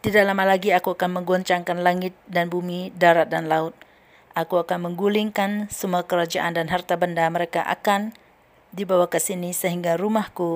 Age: 40-59